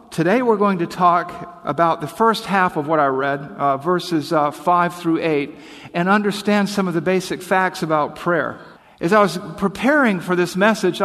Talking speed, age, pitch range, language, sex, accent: 190 wpm, 50-69, 150-190 Hz, English, male, American